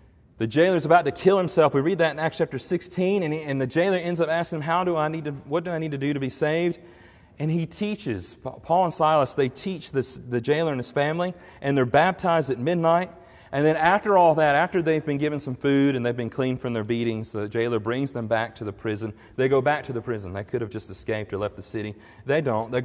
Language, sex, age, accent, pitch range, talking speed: English, male, 40-59, American, 125-180 Hz, 260 wpm